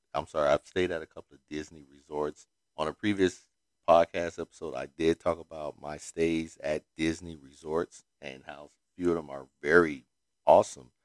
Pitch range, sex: 75-95 Hz, male